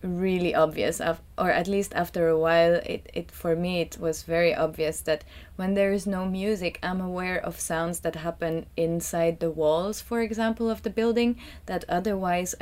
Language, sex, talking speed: English, female, 180 wpm